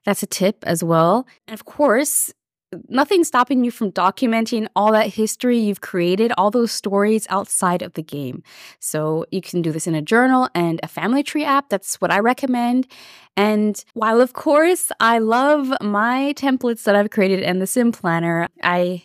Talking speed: 185 wpm